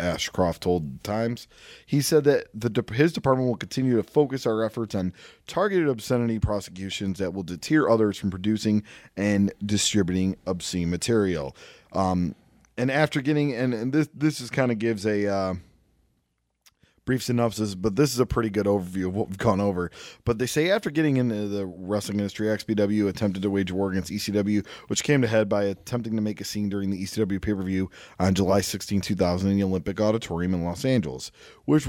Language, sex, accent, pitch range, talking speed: English, male, American, 95-115 Hz, 185 wpm